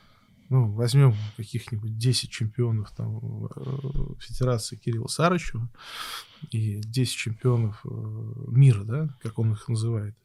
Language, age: Russian, 20-39